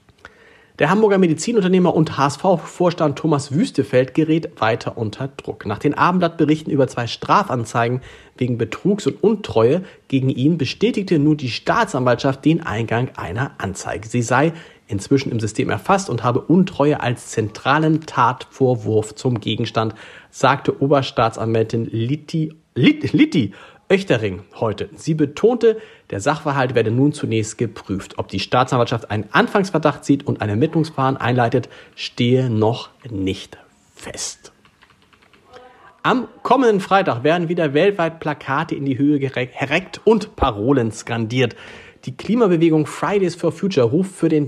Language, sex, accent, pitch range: German, male, German, 120-160 Hz